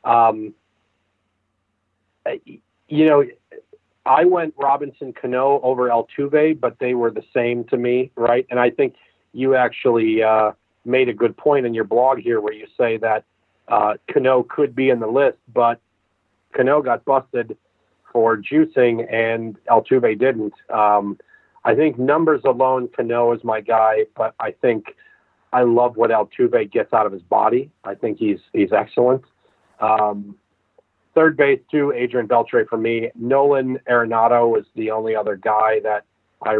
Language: English